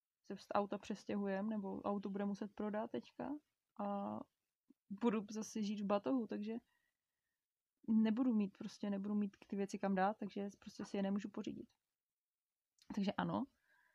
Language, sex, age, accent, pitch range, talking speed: Czech, female, 20-39, native, 200-220 Hz, 145 wpm